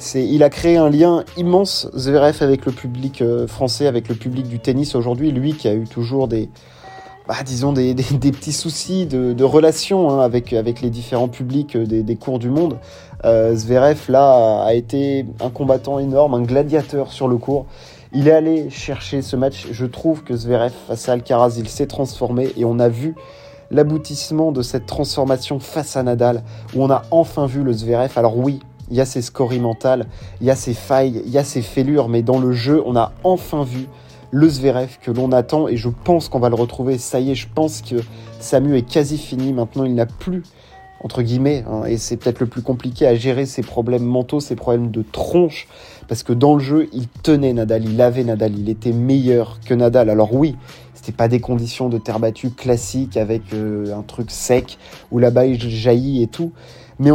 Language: French